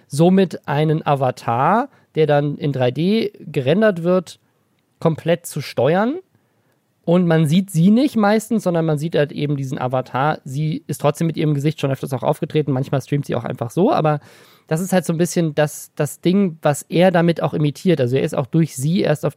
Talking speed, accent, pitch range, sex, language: 200 wpm, German, 145-175 Hz, male, German